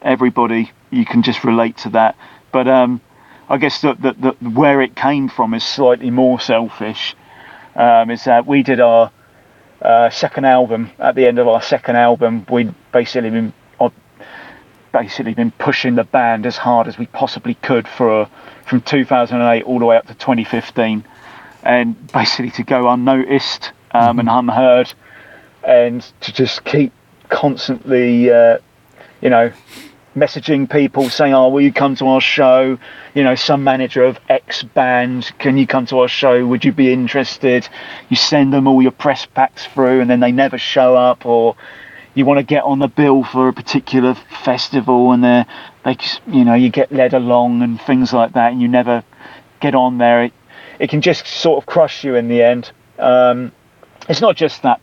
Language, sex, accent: English, male, British